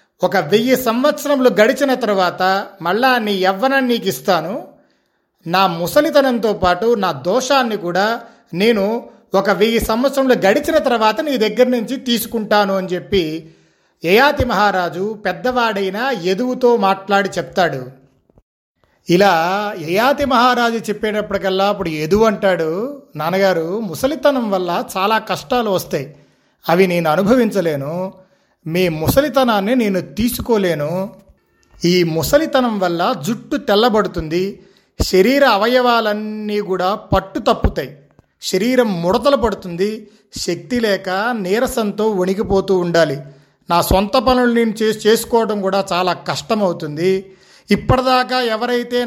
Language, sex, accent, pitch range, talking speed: Telugu, male, native, 185-240 Hz, 100 wpm